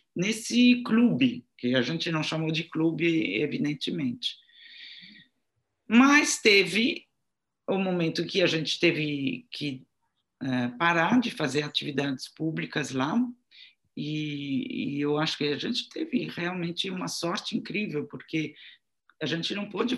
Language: Portuguese